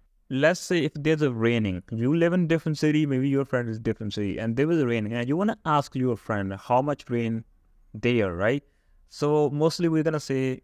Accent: Indian